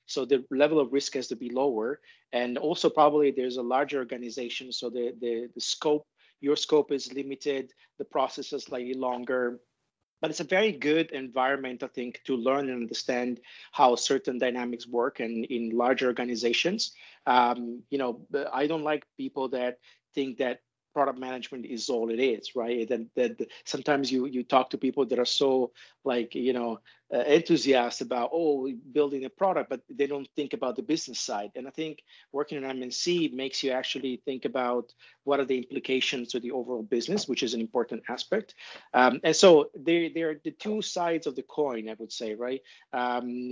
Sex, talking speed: male, 190 wpm